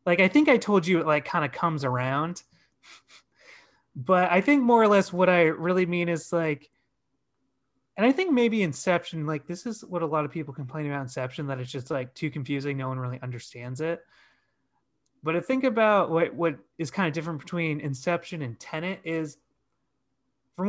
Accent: American